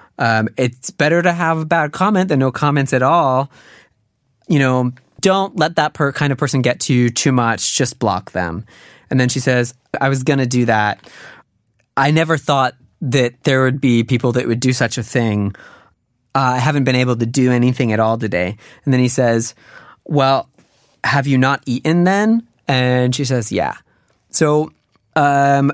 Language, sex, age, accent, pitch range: Korean, male, 20-39, American, 115-140 Hz